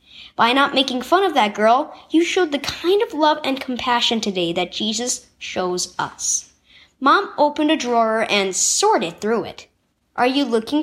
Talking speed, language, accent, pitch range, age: 170 wpm, English, American, 205-325 Hz, 10-29